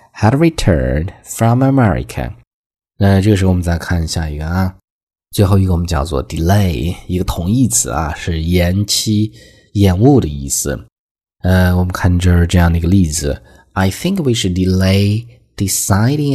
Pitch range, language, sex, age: 85-100 Hz, Chinese, male, 20-39